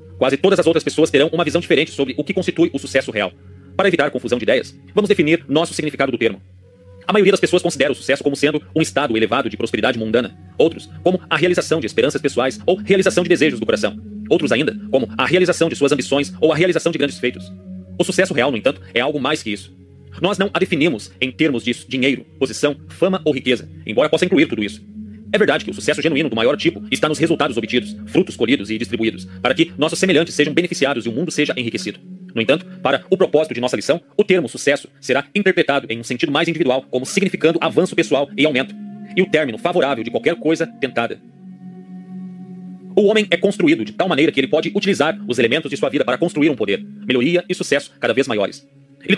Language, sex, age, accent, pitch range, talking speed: Portuguese, male, 40-59, Brazilian, 125-180 Hz, 225 wpm